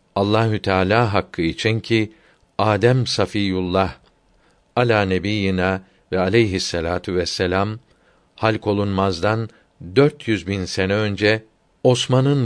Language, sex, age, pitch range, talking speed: Turkish, male, 50-69, 100-120 Hz, 105 wpm